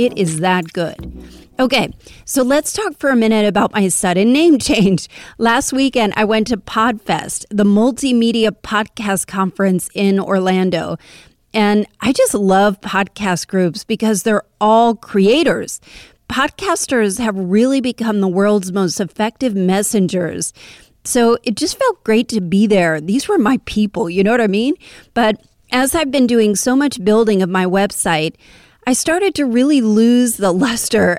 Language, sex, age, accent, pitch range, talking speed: English, female, 30-49, American, 195-245 Hz, 160 wpm